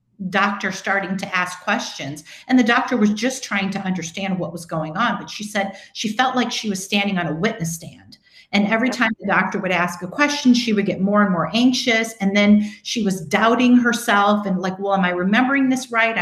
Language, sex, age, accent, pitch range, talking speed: English, female, 40-59, American, 180-220 Hz, 220 wpm